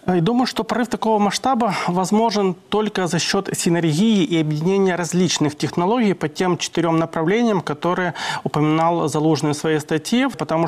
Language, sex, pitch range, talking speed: Russian, male, 155-195 Hz, 145 wpm